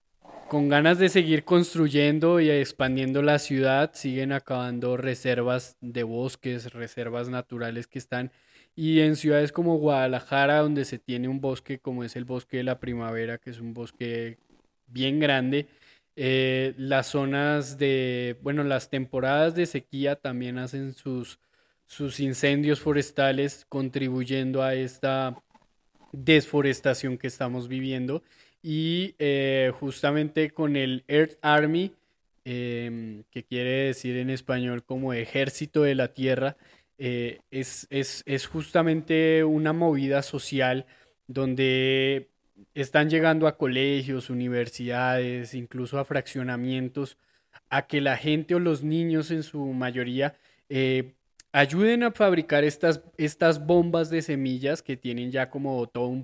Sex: male